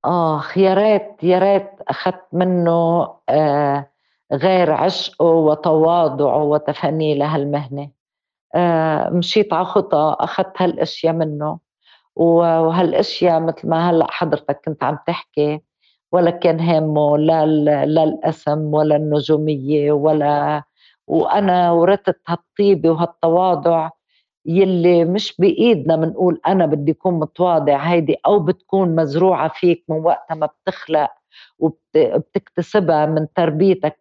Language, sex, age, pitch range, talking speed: Arabic, female, 50-69, 155-185 Hz, 105 wpm